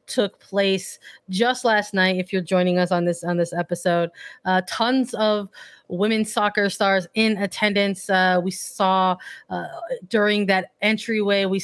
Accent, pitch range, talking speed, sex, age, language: American, 180-205 Hz, 155 wpm, female, 20-39, English